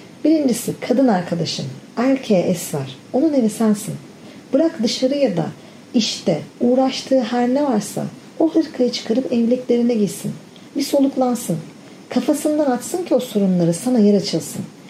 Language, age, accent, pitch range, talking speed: Turkish, 40-59, native, 205-270 Hz, 130 wpm